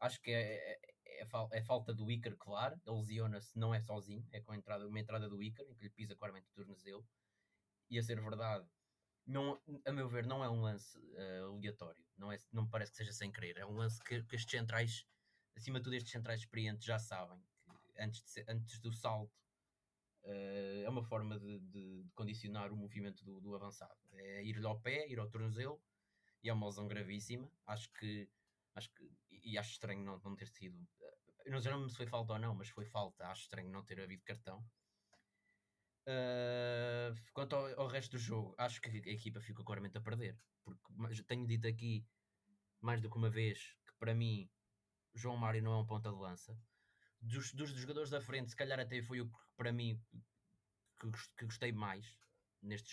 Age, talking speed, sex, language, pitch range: 20-39, 200 wpm, male, Portuguese, 105-120 Hz